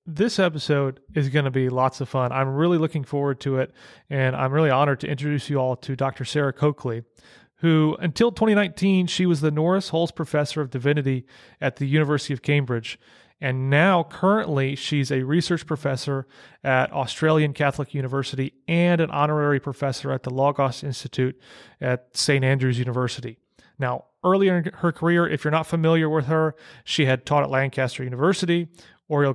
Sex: male